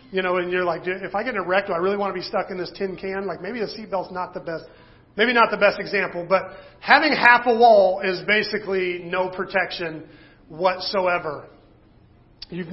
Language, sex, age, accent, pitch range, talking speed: English, male, 40-59, American, 170-205 Hz, 205 wpm